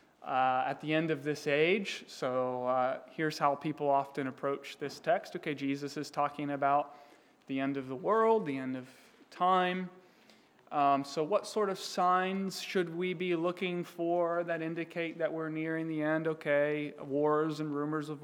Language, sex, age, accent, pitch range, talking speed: English, male, 30-49, American, 145-175 Hz, 175 wpm